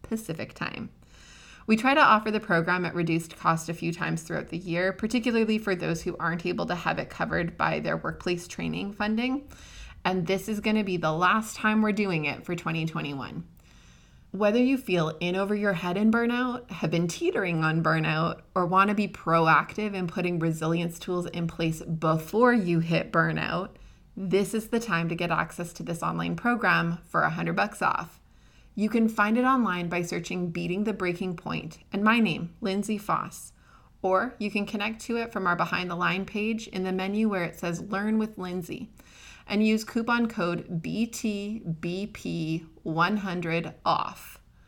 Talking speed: 180 wpm